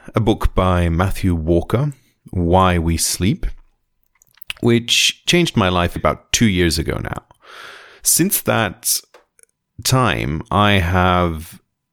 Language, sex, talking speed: English, male, 110 wpm